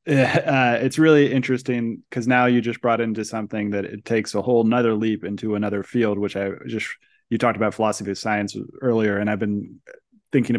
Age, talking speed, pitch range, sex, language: 20-39, 200 wpm, 105-120 Hz, male, English